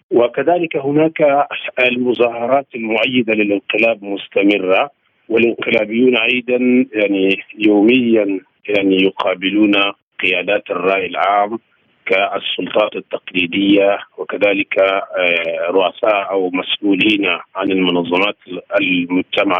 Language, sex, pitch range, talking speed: Arabic, male, 100-120 Hz, 75 wpm